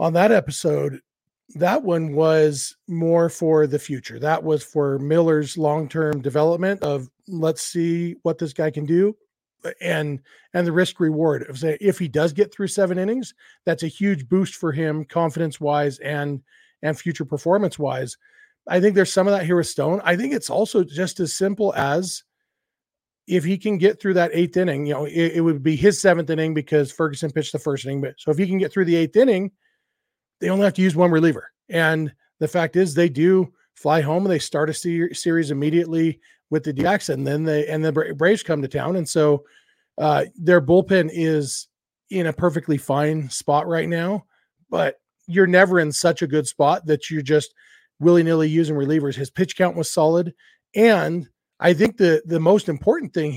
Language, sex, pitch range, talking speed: English, male, 155-185 Hz, 195 wpm